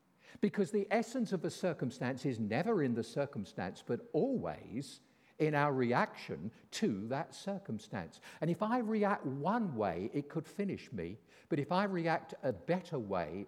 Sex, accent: male, British